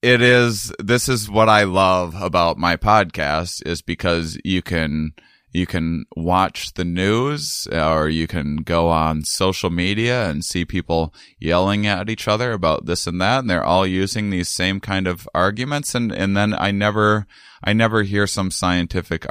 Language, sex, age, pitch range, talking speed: English, male, 20-39, 80-105 Hz, 175 wpm